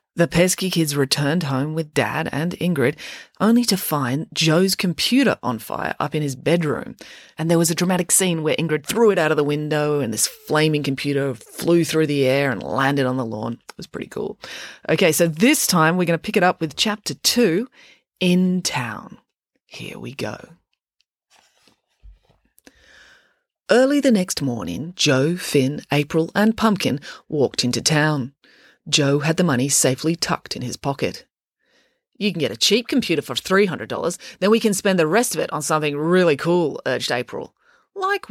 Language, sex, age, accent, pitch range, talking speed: English, female, 30-49, Australian, 145-205 Hz, 175 wpm